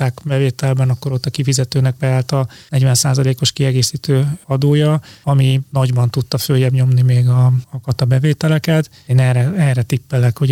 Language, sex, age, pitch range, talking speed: Hungarian, male, 30-49, 125-140 Hz, 145 wpm